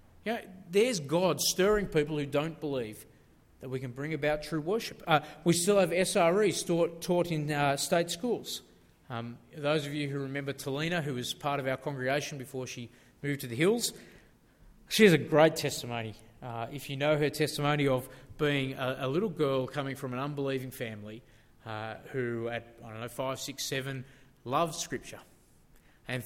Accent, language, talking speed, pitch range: Australian, English, 180 wpm, 130-175 Hz